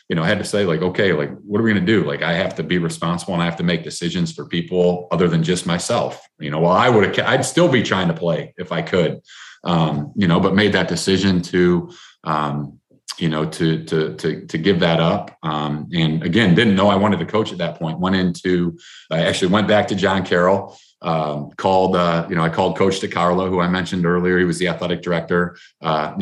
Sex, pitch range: male, 80-95 Hz